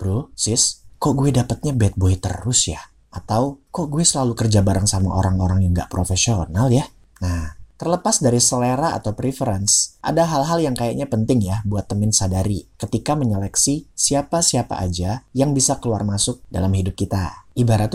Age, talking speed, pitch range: 30-49, 160 wpm, 95-130 Hz